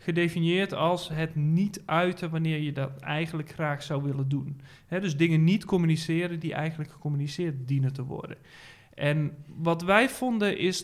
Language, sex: Dutch, male